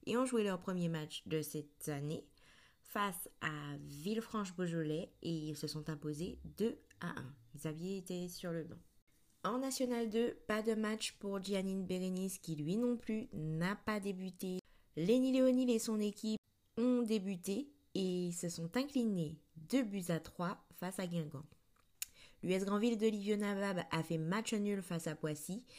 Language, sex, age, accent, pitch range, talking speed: French, female, 20-39, French, 160-215 Hz, 170 wpm